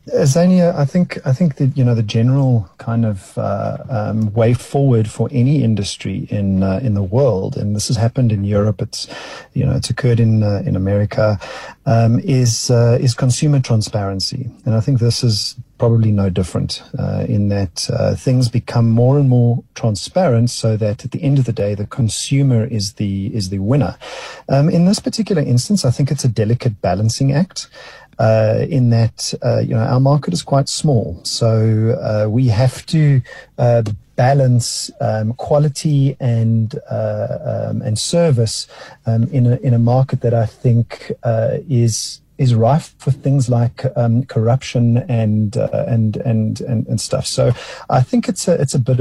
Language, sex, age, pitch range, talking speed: English, male, 40-59, 110-135 Hz, 180 wpm